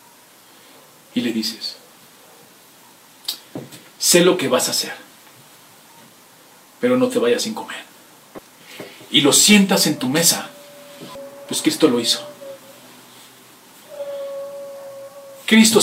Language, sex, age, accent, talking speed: Spanish, male, 40-59, Mexican, 100 wpm